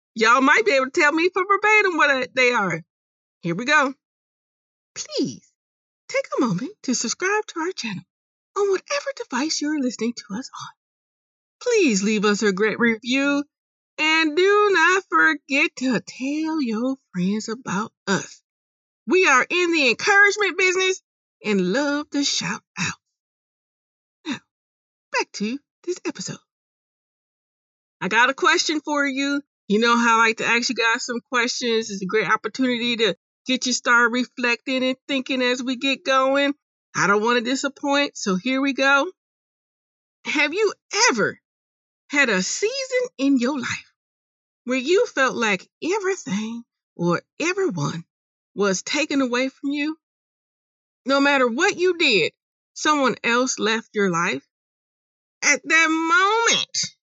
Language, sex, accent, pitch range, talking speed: English, female, American, 235-325 Hz, 145 wpm